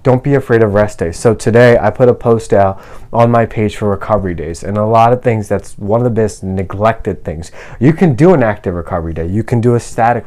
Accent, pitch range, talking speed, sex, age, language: American, 100-125 Hz, 250 wpm, male, 20-39, English